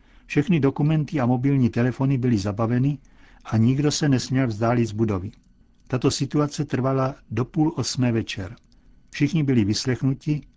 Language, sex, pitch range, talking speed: Czech, male, 115-135 Hz, 135 wpm